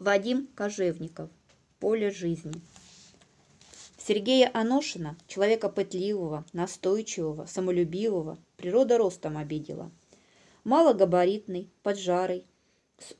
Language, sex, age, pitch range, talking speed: Russian, female, 20-39, 180-235 Hz, 75 wpm